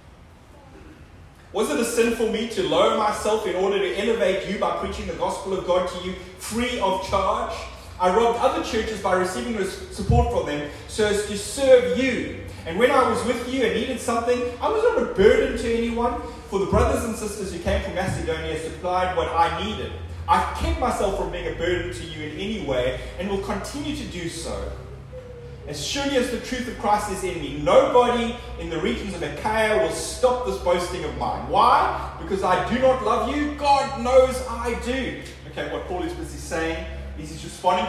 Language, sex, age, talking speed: English, male, 30-49, 205 wpm